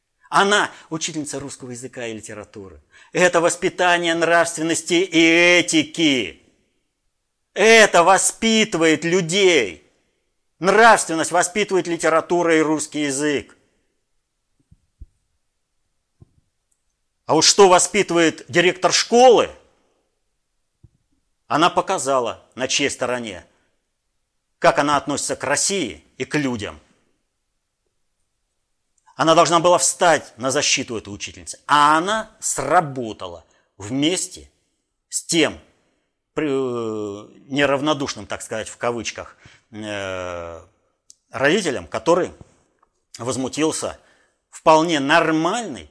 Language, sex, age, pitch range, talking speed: Russian, male, 50-69, 105-170 Hz, 80 wpm